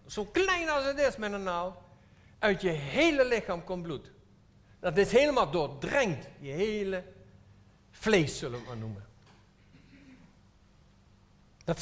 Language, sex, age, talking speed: Dutch, male, 60-79, 130 wpm